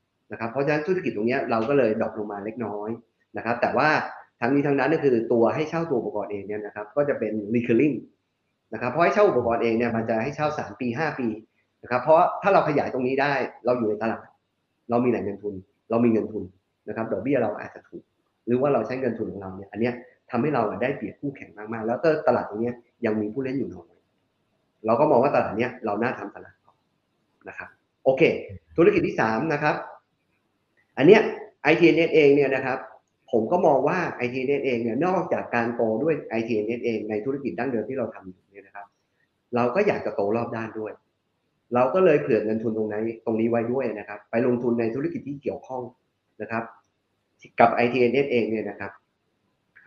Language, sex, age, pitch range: Thai, male, 30-49, 105-130 Hz